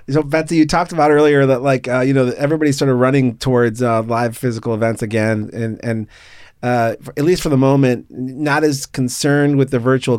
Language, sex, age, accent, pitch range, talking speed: English, male, 30-49, American, 110-130 Hz, 205 wpm